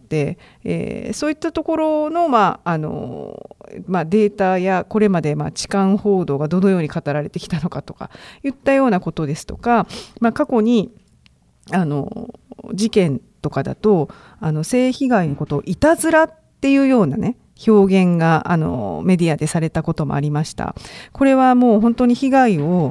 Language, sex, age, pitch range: Japanese, female, 40-59, 165-260 Hz